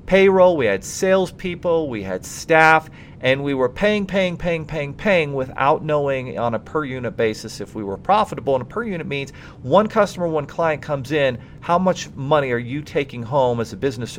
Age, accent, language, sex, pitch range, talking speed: 40-59, American, English, male, 120-160 Hz, 200 wpm